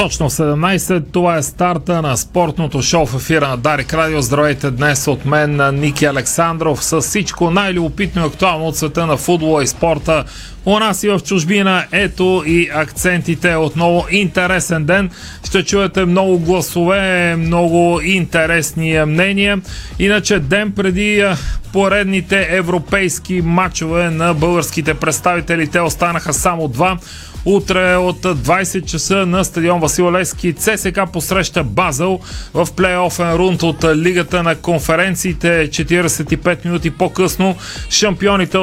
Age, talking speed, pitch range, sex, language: 30-49, 130 wpm, 160-185 Hz, male, Bulgarian